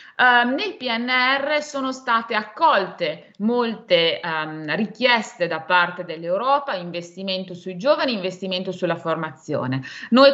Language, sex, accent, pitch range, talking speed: Italian, female, native, 190-265 Hz, 100 wpm